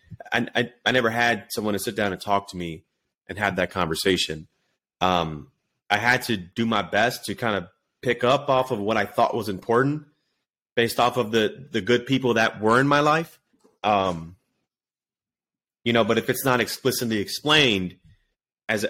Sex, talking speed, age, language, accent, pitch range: male, 180 wpm, 30-49, English, American, 100-125 Hz